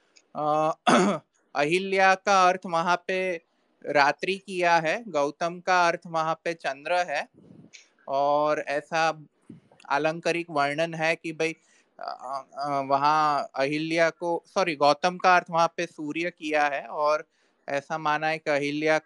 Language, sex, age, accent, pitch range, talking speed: Hindi, male, 20-39, native, 150-175 Hz, 115 wpm